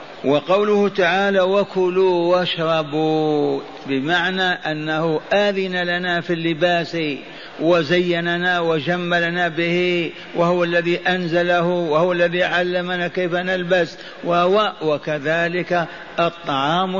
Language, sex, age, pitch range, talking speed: Arabic, male, 50-69, 155-195 Hz, 85 wpm